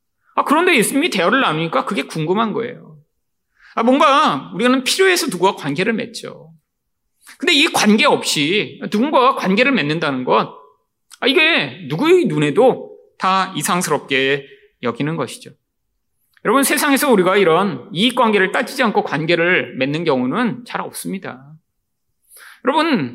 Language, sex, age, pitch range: Korean, male, 40-59, 160-275 Hz